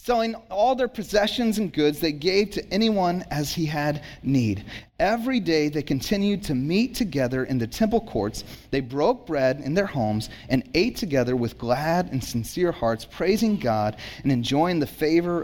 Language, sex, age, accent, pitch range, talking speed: English, male, 30-49, American, 125-200 Hz, 175 wpm